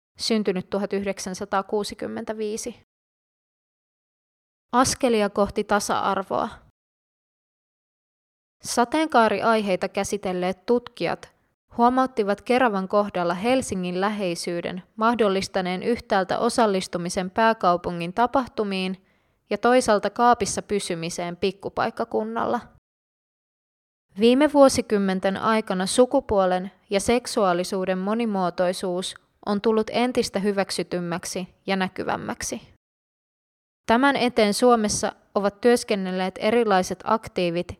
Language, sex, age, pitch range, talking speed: Finnish, female, 20-39, 190-235 Hz, 70 wpm